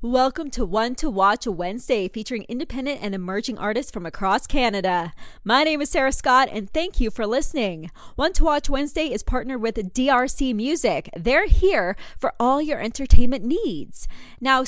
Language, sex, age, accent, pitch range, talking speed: English, female, 20-39, American, 225-295 Hz, 170 wpm